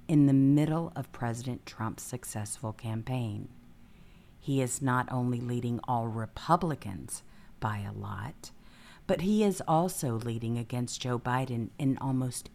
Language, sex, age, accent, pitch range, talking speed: English, female, 50-69, American, 115-140 Hz, 135 wpm